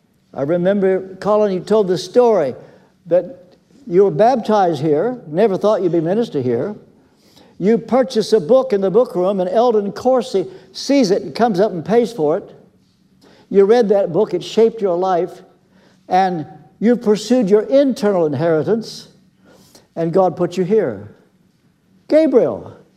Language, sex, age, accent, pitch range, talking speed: English, male, 60-79, American, 185-240 Hz, 150 wpm